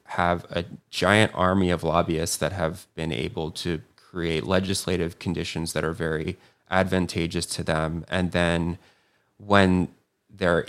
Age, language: 20-39, English